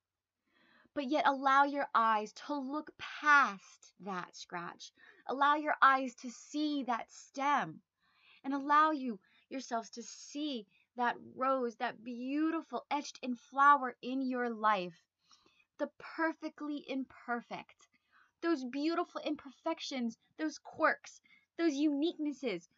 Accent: American